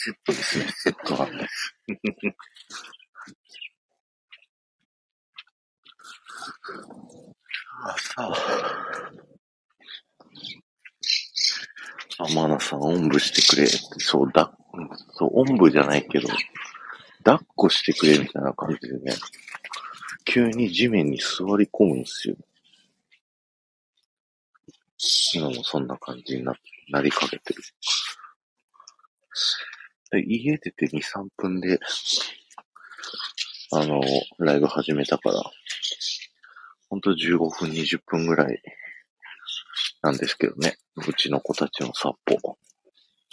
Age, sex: 50-69, male